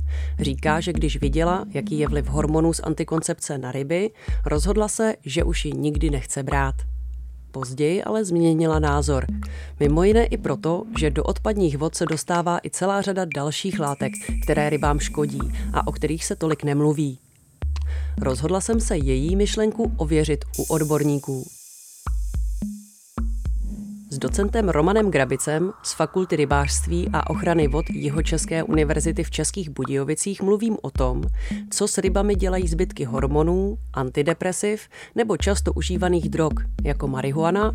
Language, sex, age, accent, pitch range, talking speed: Czech, female, 30-49, native, 130-185 Hz, 140 wpm